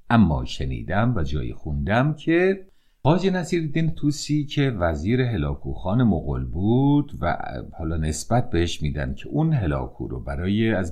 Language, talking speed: Persian, 150 wpm